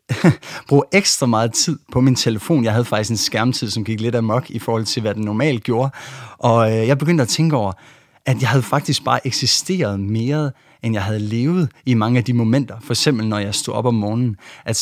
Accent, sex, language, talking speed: Danish, male, English, 220 wpm